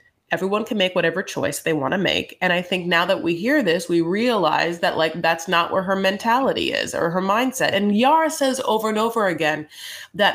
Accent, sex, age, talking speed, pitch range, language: American, female, 30-49, 220 wpm, 160-220 Hz, English